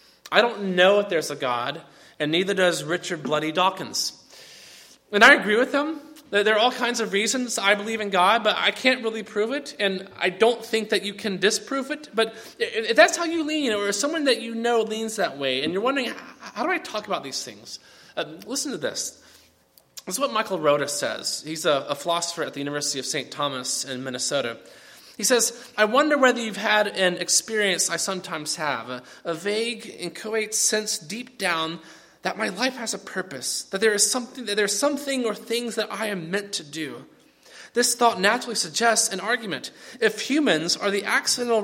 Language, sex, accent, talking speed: English, male, American, 200 wpm